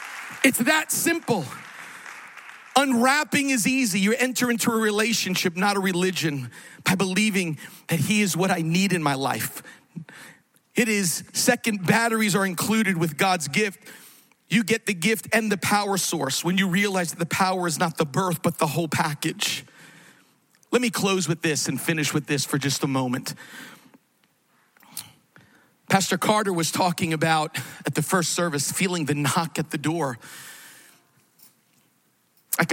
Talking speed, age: 155 wpm, 40-59